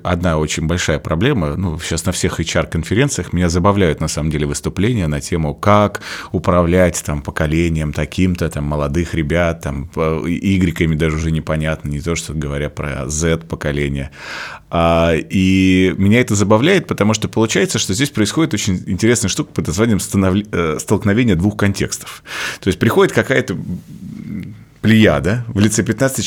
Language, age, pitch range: Russian, 30-49, 85-110 Hz